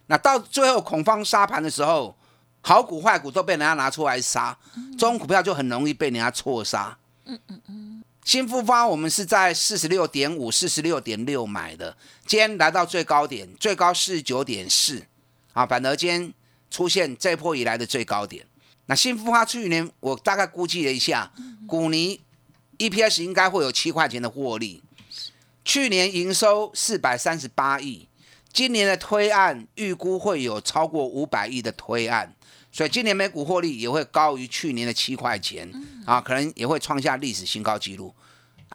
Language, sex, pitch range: Chinese, male, 130-205 Hz